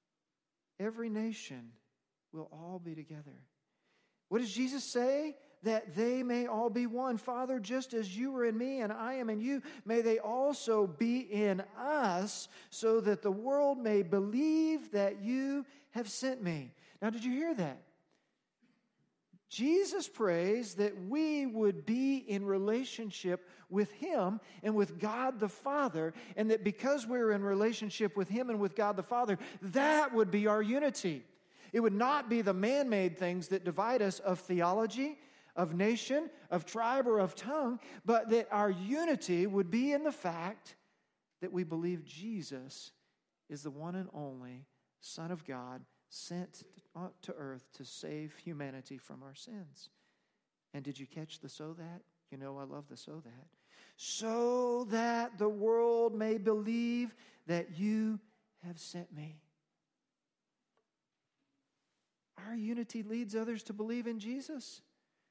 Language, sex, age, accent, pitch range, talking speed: English, male, 40-59, American, 180-240 Hz, 150 wpm